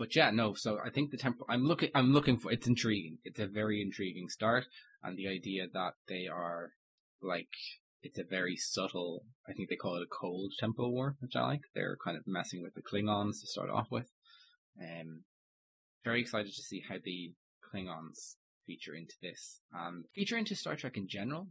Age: 20-39